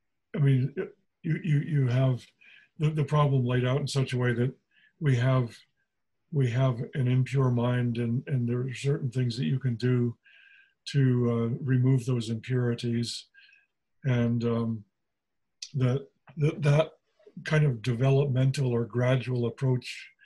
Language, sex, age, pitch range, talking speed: English, male, 50-69, 120-140 Hz, 145 wpm